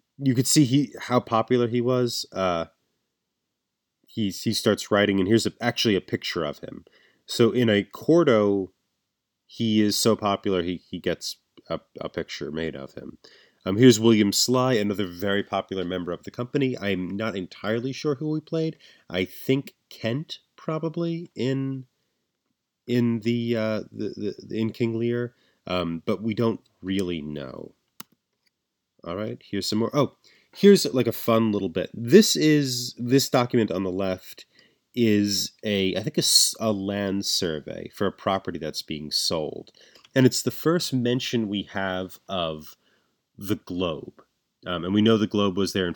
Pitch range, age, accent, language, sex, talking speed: 95-120 Hz, 30-49, American, English, male, 165 wpm